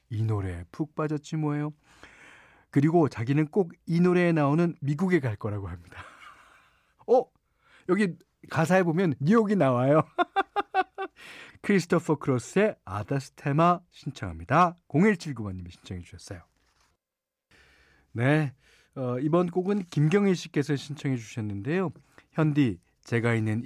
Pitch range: 105-160 Hz